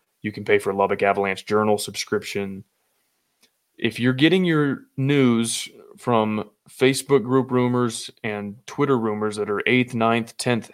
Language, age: English, 20-39